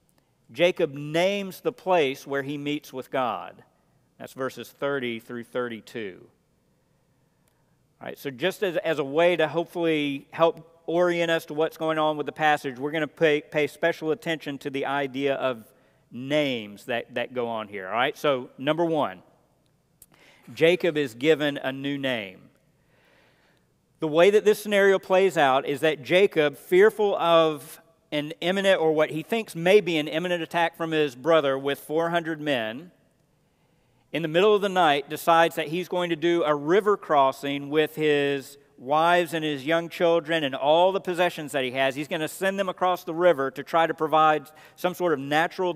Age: 50-69